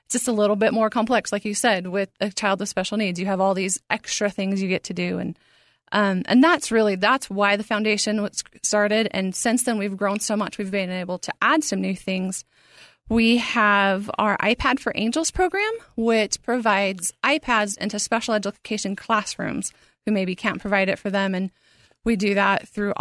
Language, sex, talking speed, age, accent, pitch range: English, female, 205 wpm, 30-49, American, 200-235 Hz